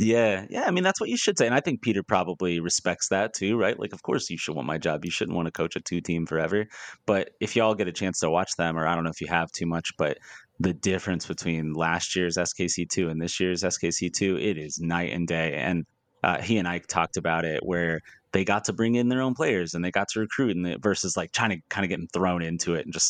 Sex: male